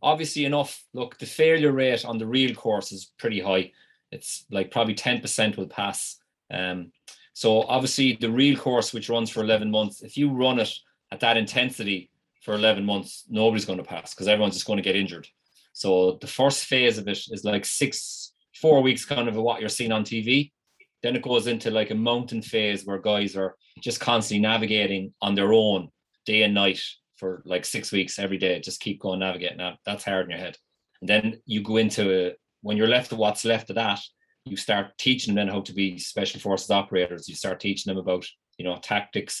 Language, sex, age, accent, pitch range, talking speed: English, male, 20-39, Irish, 95-115 Hz, 210 wpm